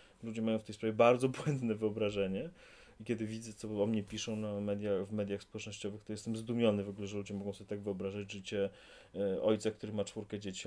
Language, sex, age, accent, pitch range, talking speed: Polish, male, 30-49, native, 105-125 Hz, 210 wpm